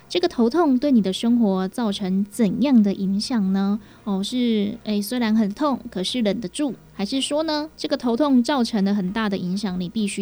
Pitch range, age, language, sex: 195-235 Hz, 20-39, Chinese, female